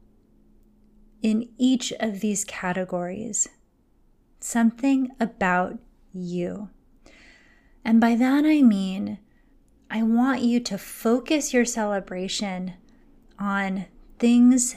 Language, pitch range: English, 195-240 Hz